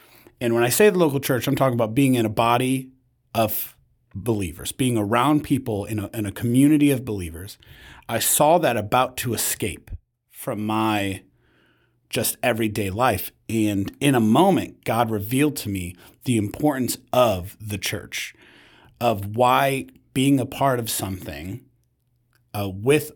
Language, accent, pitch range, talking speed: English, American, 100-125 Hz, 150 wpm